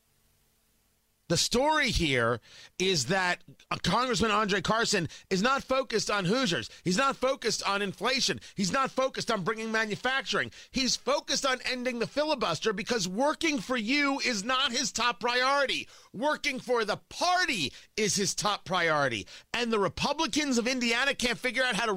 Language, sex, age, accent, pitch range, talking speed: English, male, 40-59, American, 210-285 Hz, 155 wpm